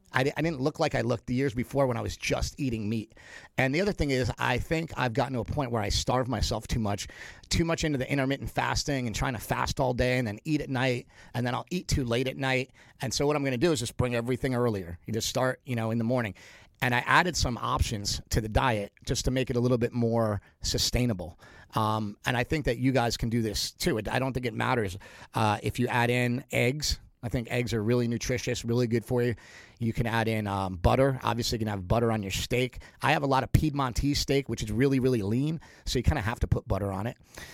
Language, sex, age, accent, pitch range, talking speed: English, male, 40-59, American, 110-135 Hz, 260 wpm